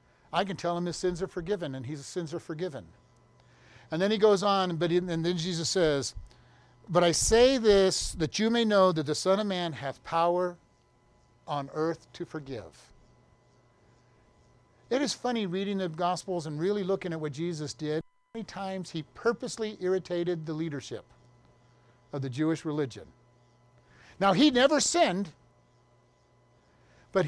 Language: English